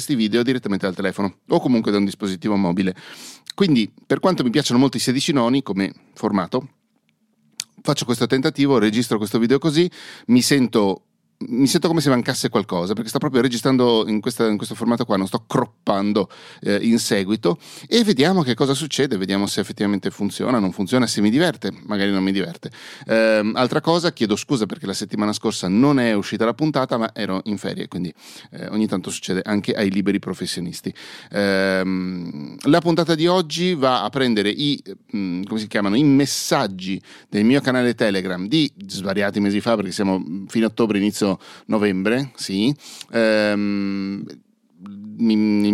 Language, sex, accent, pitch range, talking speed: Italian, male, native, 100-135 Hz, 170 wpm